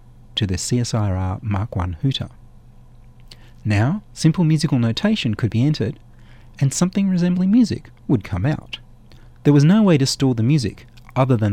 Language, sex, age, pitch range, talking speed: English, male, 30-49, 115-140 Hz, 155 wpm